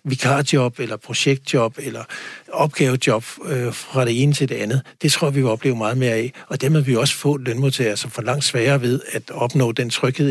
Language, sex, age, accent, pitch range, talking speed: Danish, male, 60-79, native, 125-140 Hz, 215 wpm